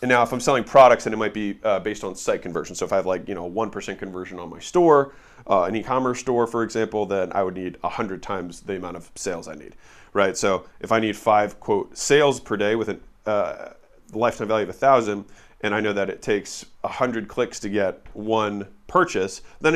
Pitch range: 100-130 Hz